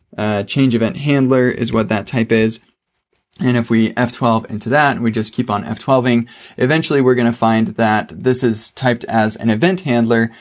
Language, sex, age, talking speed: English, male, 20-39, 190 wpm